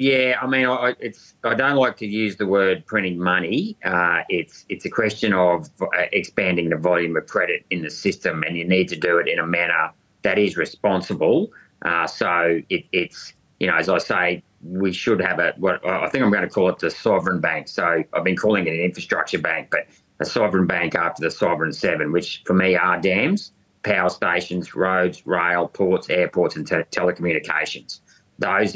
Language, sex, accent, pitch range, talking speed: English, male, Australian, 85-100 Hz, 200 wpm